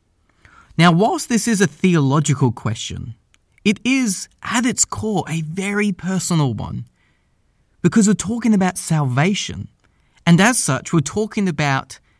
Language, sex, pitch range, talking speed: English, male, 120-180 Hz, 135 wpm